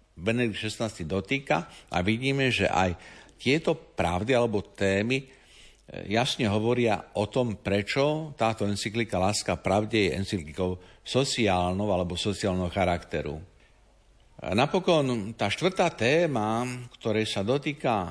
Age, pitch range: 60-79, 95-125 Hz